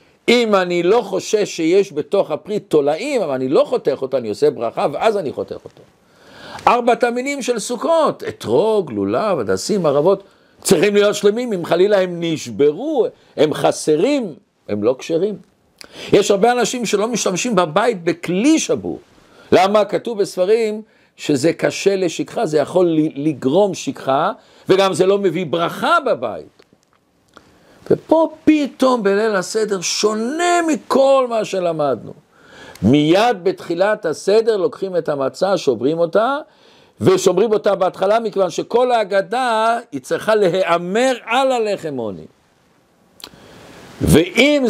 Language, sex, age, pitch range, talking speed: Hebrew, male, 50-69, 175-245 Hz, 125 wpm